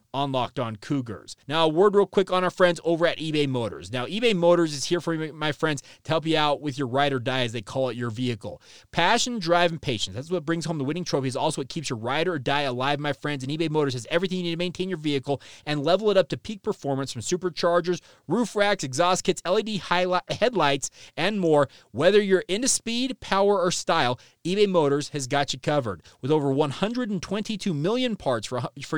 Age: 30-49